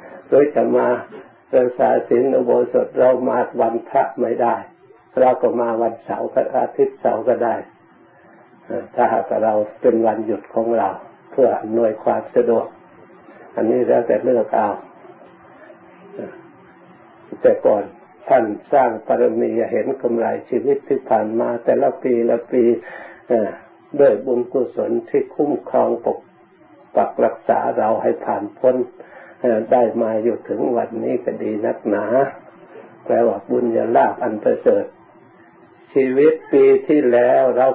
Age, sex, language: 60-79, male, Thai